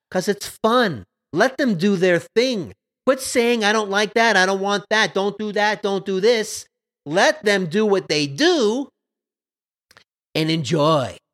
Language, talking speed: English, 170 wpm